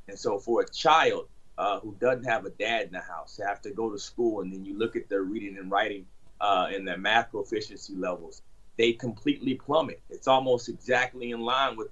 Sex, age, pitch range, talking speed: male, 30-49, 130-175 Hz, 215 wpm